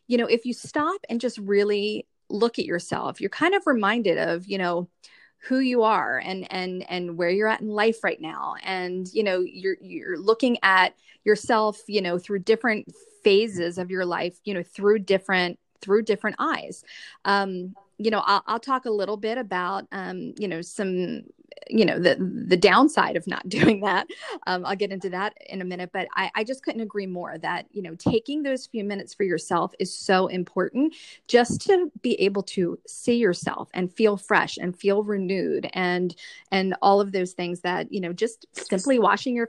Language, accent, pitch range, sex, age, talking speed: English, American, 185-230 Hz, female, 30-49, 200 wpm